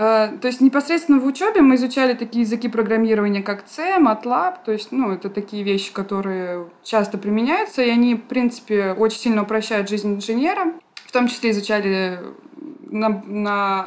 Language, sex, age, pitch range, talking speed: Russian, female, 20-39, 205-265 Hz, 160 wpm